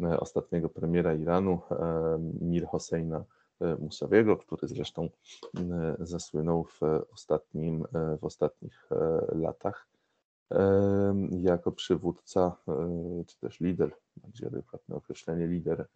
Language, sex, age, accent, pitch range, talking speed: Polish, male, 20-39, native, 85-115 Hz, 85 wpm